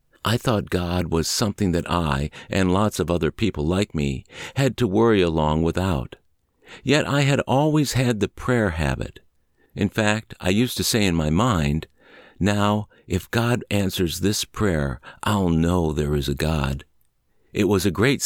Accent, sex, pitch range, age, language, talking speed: American, male, 80-110 Hz, 60-79, English, 170 wpm